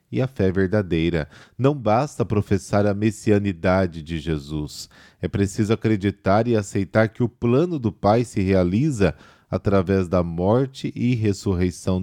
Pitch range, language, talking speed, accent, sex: 95-120 Hz, Portuguese, 140 wpm, Brazilian, male